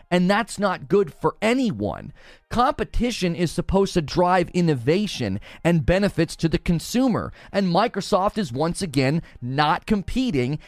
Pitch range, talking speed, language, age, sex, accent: 140-215 Hz, 135 wpm, English, 30-49, male, American